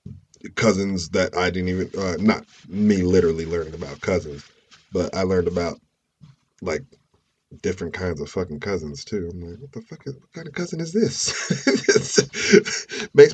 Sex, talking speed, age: male, 165 wpm, 30-49